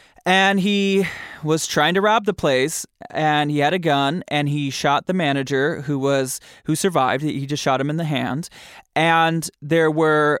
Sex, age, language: male, 20-39, English